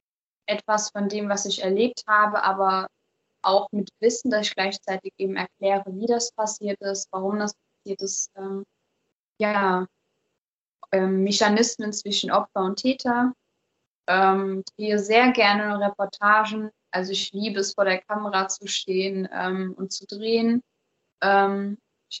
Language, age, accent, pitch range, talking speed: English, 20-39, German, 195-215 Hz, 130 wpm